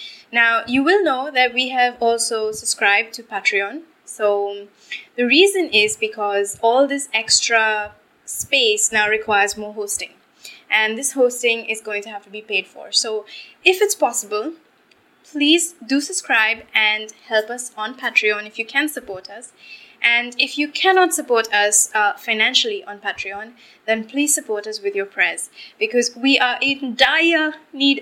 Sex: female